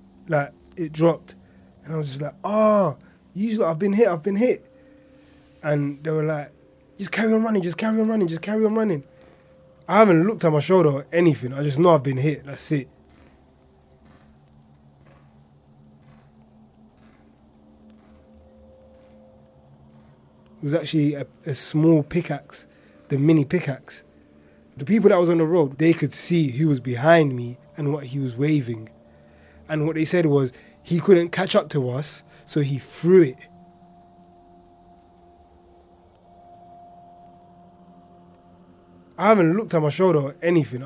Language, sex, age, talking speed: English, male, 20-39, 145 wpm